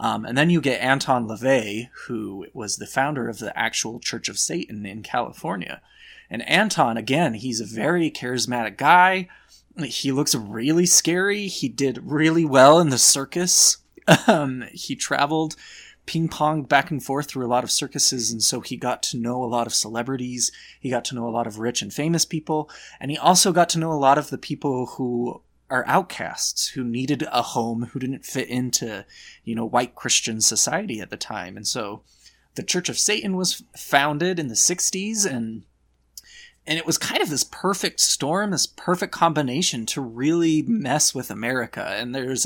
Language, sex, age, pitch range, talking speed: English, male, 20-39, 120-155 Hz, 185 wpm